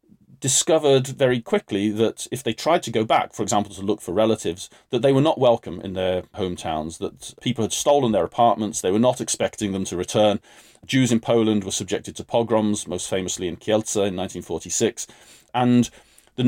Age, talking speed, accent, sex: 40-59, 190 wpm, British, male